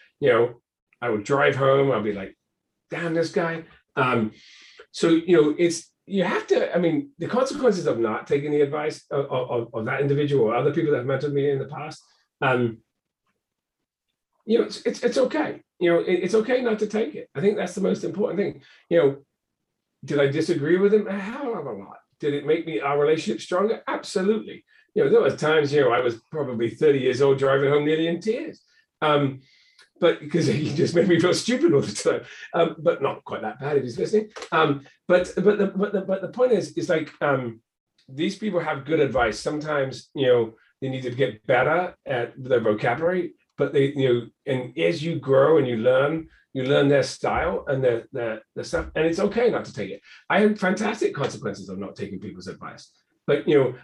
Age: 40-59